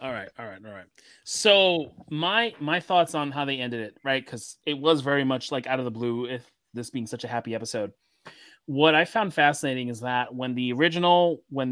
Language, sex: English, male